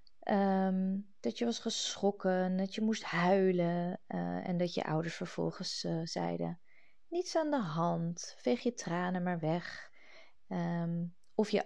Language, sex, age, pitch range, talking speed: Dutch, female, 20-39, 165-195 Hz, 135 wpm